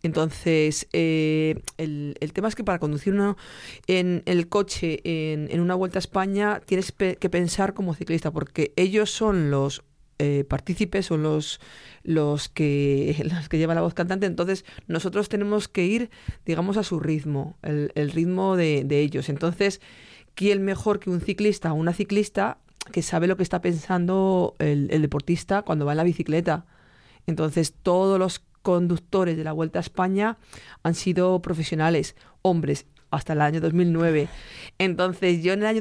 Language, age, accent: Spanish, 40-59, Spanish